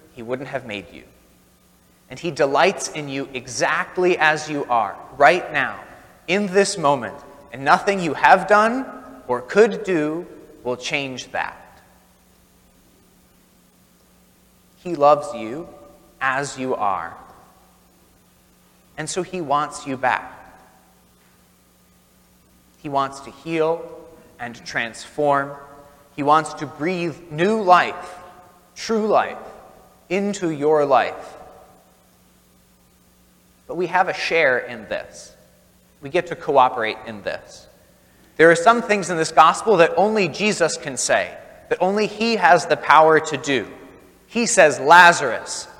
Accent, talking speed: American, 125 wpm